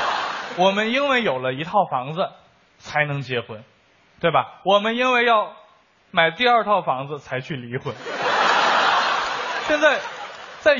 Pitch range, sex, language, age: 140-230 Hz, male, Chinese, 20-39